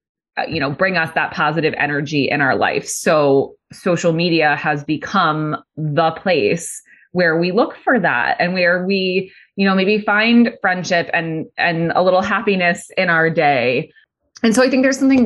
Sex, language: female, English